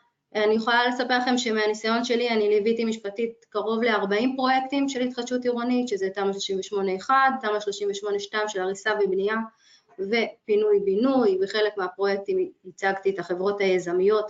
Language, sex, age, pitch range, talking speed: Hebrew, female, 20-39, 190-235 Hz, 120 wpm